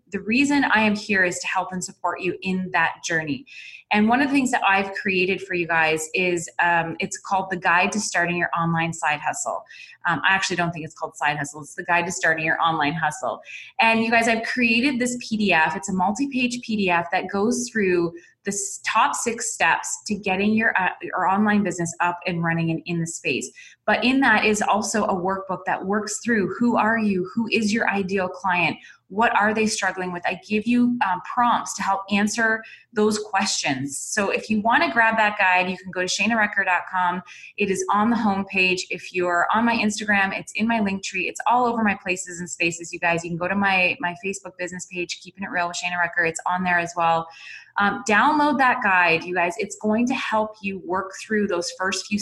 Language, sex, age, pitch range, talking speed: English, female, 20-39, 175-220 Hz, 220 wpm